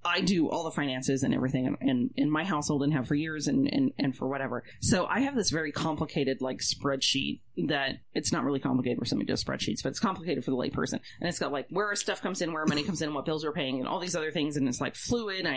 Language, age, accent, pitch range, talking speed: English, 30-49, American, 145-195 Hz, 280 wpm